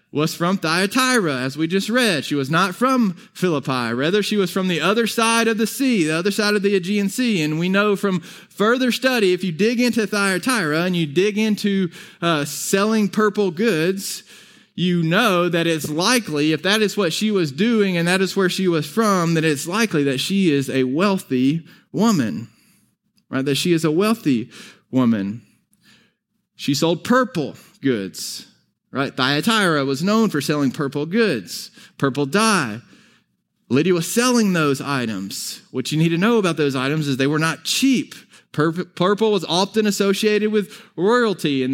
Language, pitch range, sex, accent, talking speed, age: English, 155-215 Hz, male, American, 175 wpm, 20-39